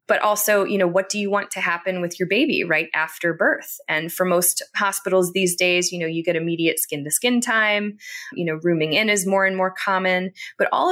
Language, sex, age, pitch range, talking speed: English, female, 20-39, 165-200 Hz, 220 wpm